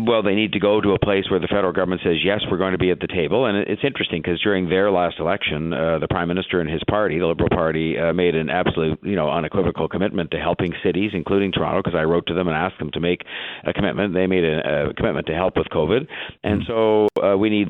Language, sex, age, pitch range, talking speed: English, male, 50-69, 90-100 Hz, 265 wpm